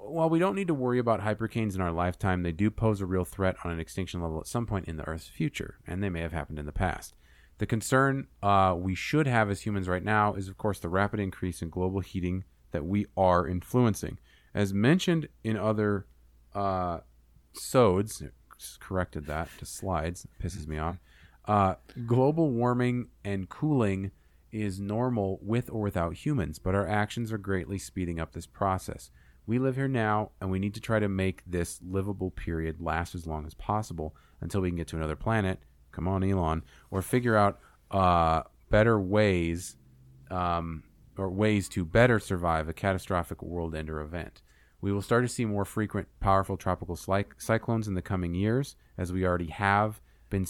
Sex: male